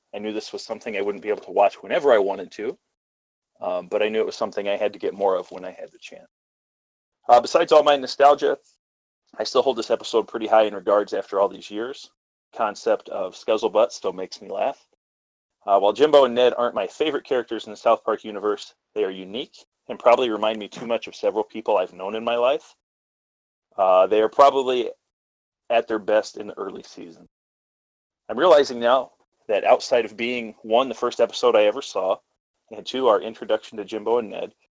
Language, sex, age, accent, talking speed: English, male, 30-49, American, 210 wpm